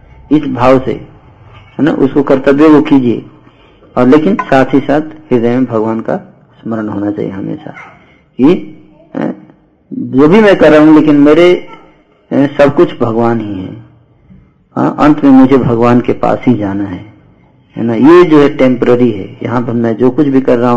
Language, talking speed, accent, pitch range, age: Hindi, 170 wpm, native, 120-150 Hz, 50-69